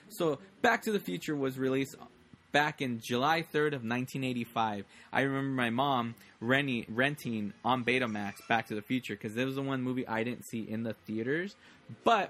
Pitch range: 110-140 Hz